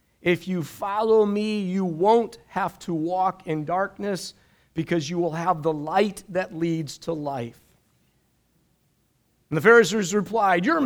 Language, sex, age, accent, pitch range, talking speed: English, male, 40-59, American, 160-215 Hz, 145 wpm